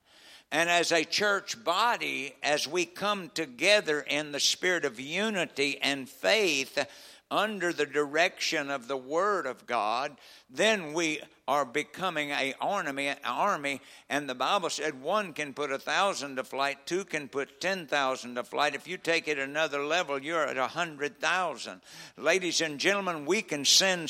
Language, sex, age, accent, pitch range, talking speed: English, male, 60-79, American, 145-185 Hz, 165 wpm